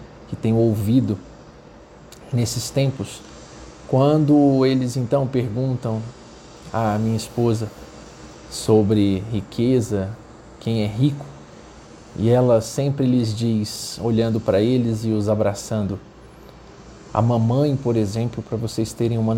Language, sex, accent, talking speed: Portuguese, male, Brazilian, 110 wpm